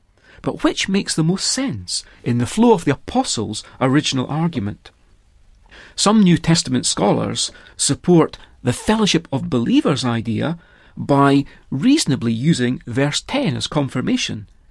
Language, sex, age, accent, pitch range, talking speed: English, male, 40-59, British, 125-175 Hz, 125 wpm